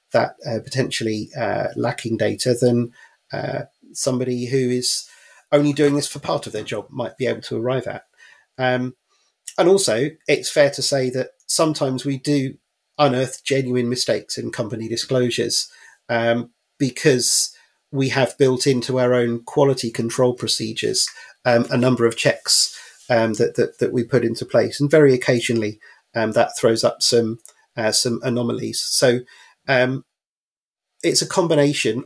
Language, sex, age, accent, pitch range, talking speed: English, male, 40-59, British, 115-135 Hz, 155 wpm